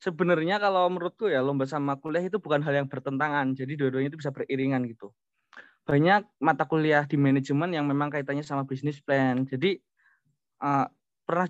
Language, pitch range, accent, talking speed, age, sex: Indonesian, 135-160 Hz, native, 165 wpm, 20-39, male